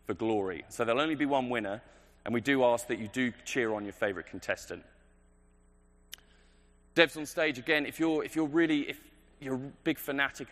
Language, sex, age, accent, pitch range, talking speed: English, male, 20-39, British, 100-135 Hz, 195 wpm